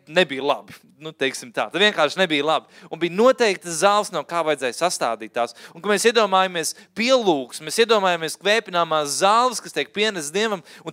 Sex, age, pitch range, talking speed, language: male, 30-49, 175-230 Hz, 175 wpm, Finnish